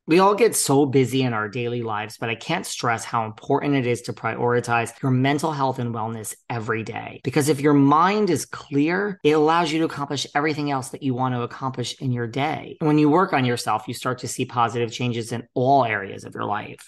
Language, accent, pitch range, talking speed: English, American, 115-140 Hz, 230 wpm